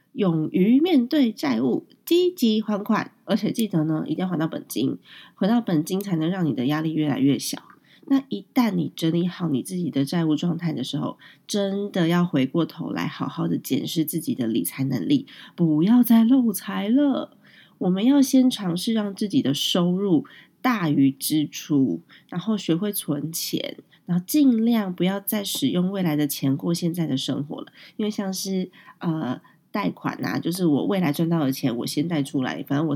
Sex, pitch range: female, 155-220 Hz